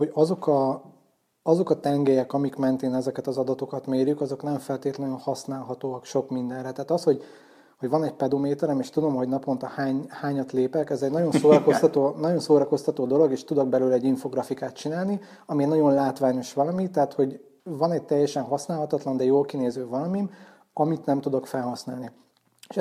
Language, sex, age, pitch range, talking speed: Hungarian, male, 30-49, 130-150 Hz, 170 wpm